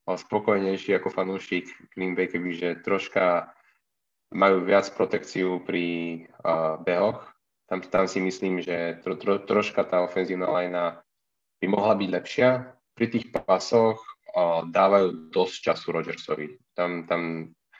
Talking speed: 130 wpm